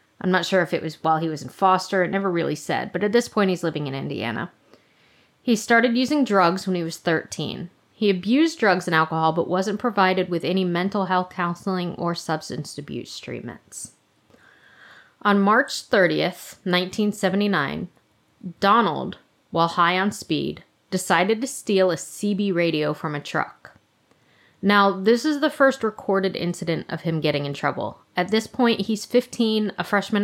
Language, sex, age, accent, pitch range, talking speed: English, female, 20-39, American, 170-210 Hz, 170 wpm